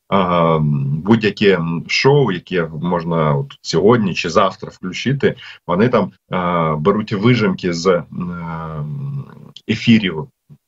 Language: Russian